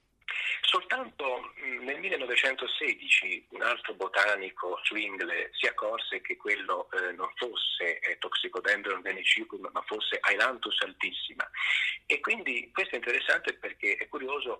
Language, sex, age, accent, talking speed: Italian, male, 30-49, native, 110 wpm